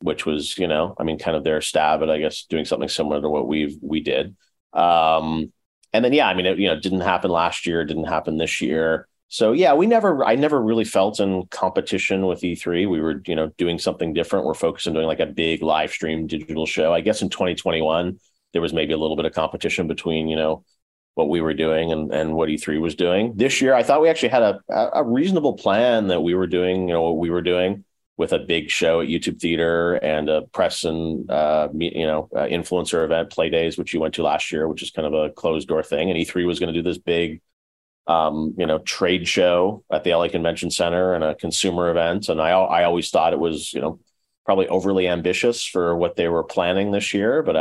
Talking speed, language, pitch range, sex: 240 wpm, English, 80-90 Hz, male